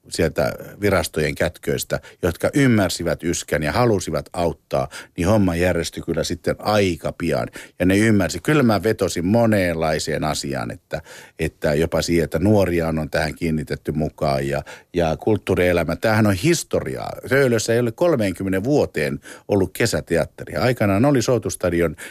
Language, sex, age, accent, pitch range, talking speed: Finnish, male, 50-69, native, 80-115 Hz, 135 wpm